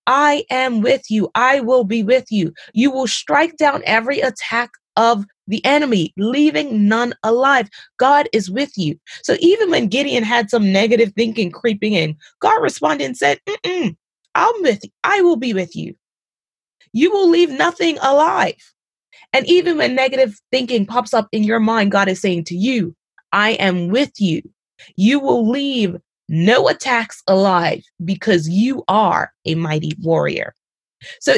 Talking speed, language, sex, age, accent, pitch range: 160 wpm, English, female, 20-39, American, 200-280 Hz